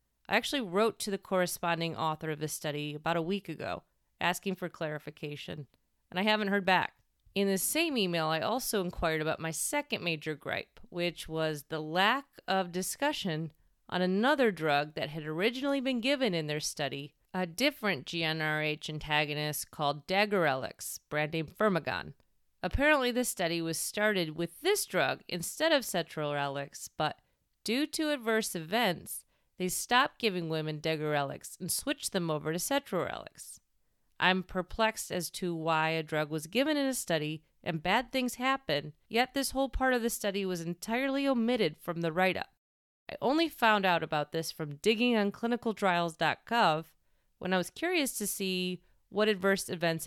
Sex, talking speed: female, 160 wpm